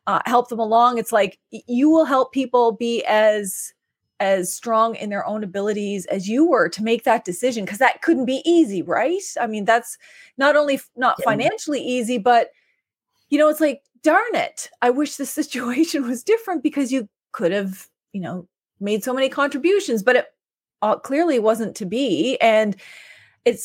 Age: 30-49